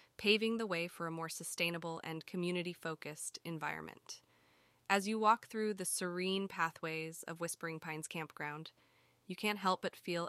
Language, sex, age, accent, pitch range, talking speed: English, female, 20-39, American, 165-205 Hz, 150 wpm